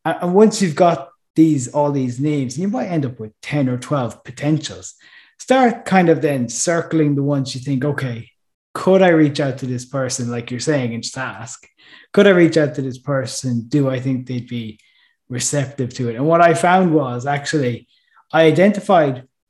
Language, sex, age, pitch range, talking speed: English, male, 20-39, 125-155 Hz, 195 wpm